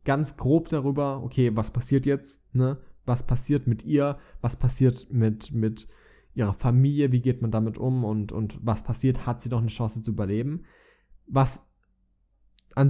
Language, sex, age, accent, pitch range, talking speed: German, male, 20-39, German, 110-135 Hz, 165 wpm